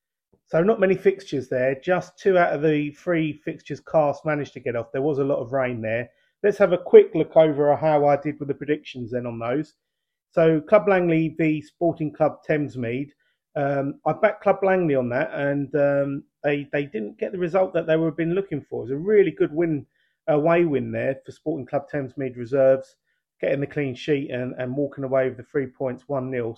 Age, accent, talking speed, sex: 30-49, British, 215 wpm, male